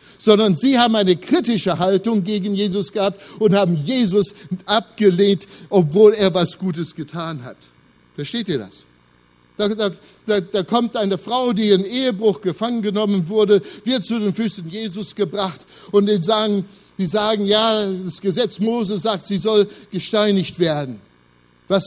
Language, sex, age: German, male, 60-79